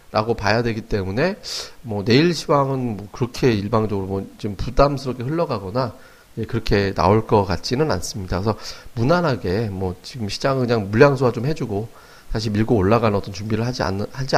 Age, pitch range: 40-59, 100-130 Hz